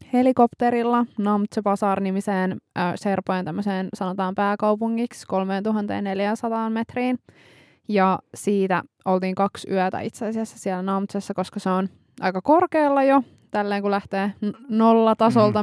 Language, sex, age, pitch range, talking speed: Finnish, female, 20-39, 185-210 Hz, 110 wpm